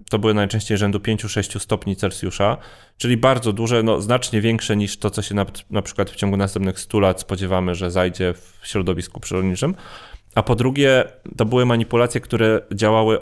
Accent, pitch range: native, 95-115 Hz